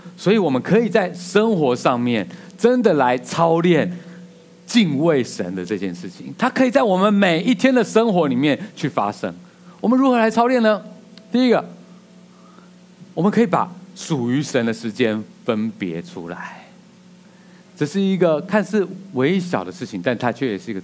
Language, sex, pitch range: Chinese, male, 125-200 Hz